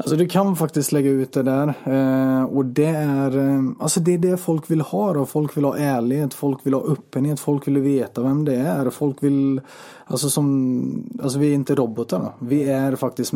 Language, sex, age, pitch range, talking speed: Swedish, male, 30-49, 120-140 Hz, 205 wpm